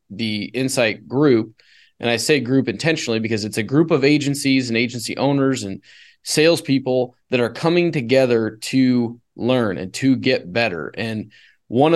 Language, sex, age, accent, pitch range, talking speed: English, male, 20-39, American, 120-155 Hz, 155 wpm